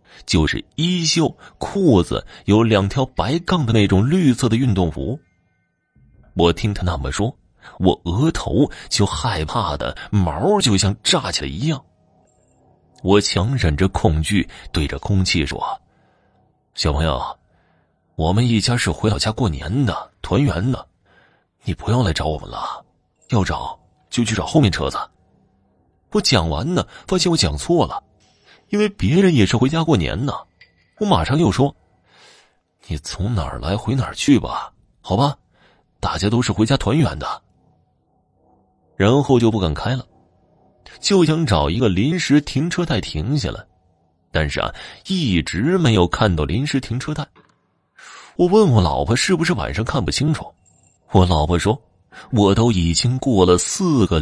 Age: 30-49